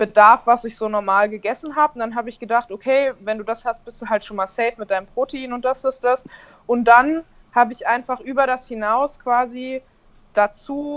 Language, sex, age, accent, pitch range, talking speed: German, female, 20-39, German, 220-255 Hz, 225 wpm